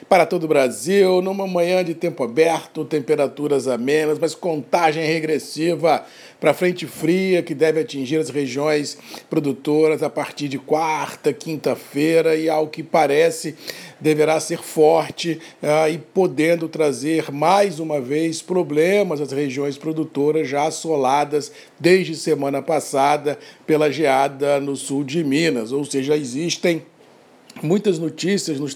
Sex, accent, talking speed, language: male, Brazilian, 130 wpm, Portuguese